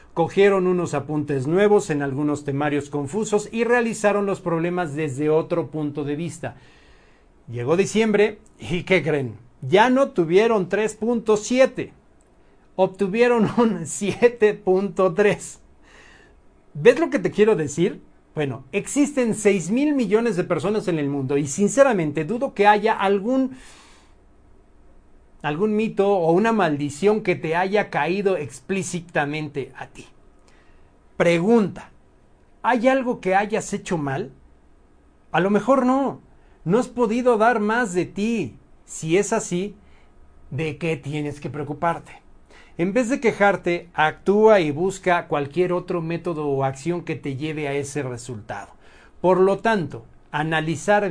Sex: male